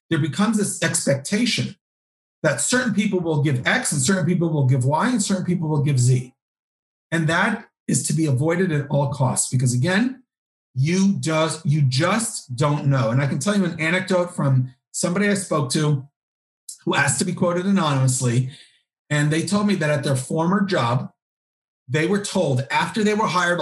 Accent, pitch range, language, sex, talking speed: American, 140-195 Hz, English, male, 185 wpm